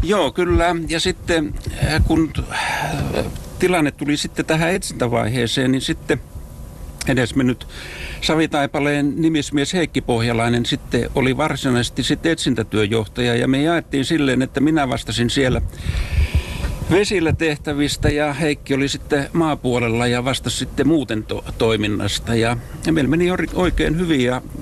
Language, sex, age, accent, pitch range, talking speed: Finnish, male, 60-79, native, 120-145 Hz, 120 wpm